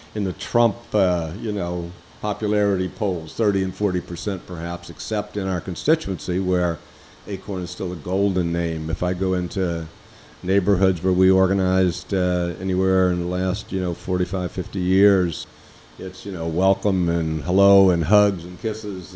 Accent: American